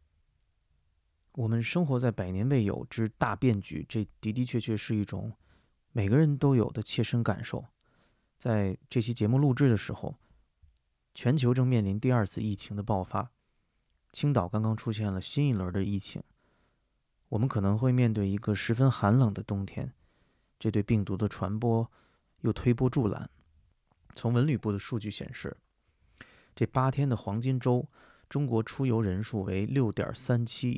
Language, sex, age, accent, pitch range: Chinese, male, 20-39, native, 100-125 Hz